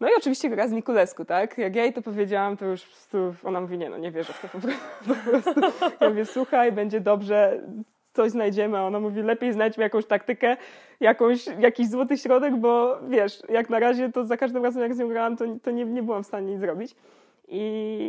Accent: native